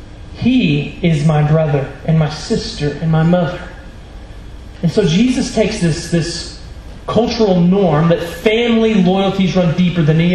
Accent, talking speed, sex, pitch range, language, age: American, 145 wpm, male, 170-245 Hz, English, 30-49